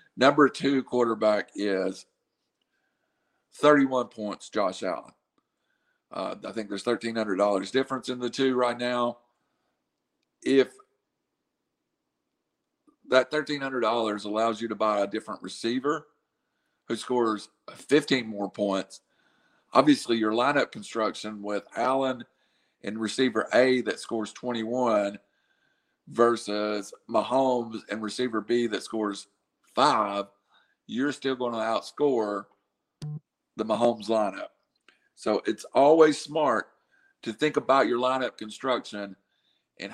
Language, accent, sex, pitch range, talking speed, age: English, American, male, 110-135 Hz, 110 wpm, 50-69